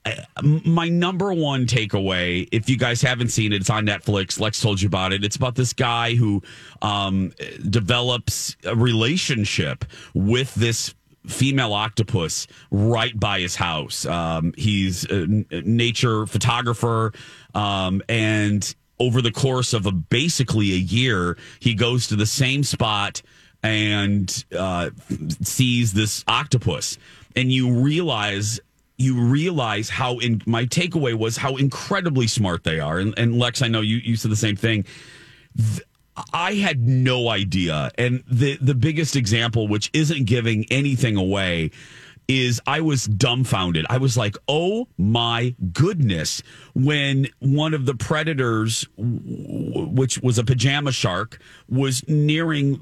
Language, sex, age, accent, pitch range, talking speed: English, male, 30-49, American, 105-135 Hz, 140 wpm